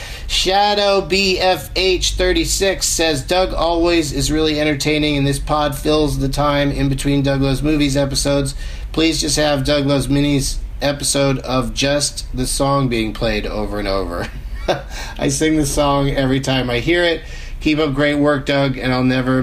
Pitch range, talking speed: 130-165 Hz, 160 wpm